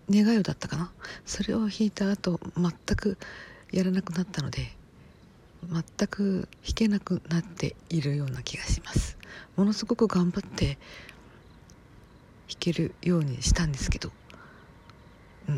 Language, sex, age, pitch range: Japanese, female, 50-69, 130-190 Hz